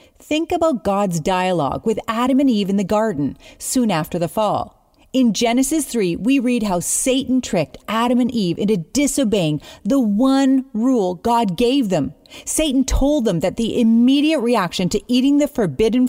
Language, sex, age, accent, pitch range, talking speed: English, female, 40-59, American, 195-265 Hz, 170 wpm